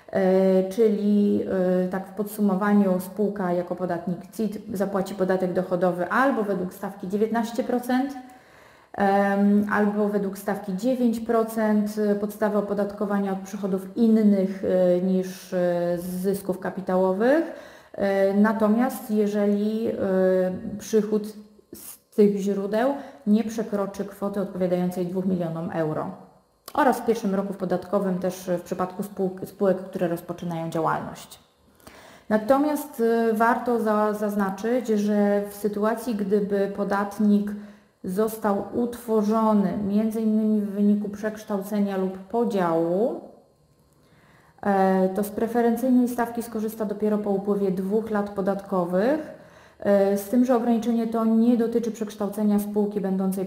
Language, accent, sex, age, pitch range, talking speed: Polish, native, female, 30-49, 190-220 Hz, 100 wpm